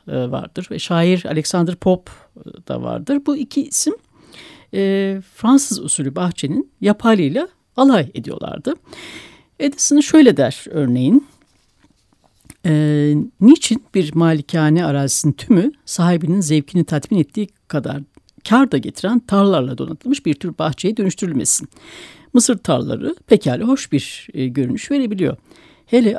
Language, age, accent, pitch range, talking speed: Turkish, 60-79, native, 155-245 Hz, 110 wpm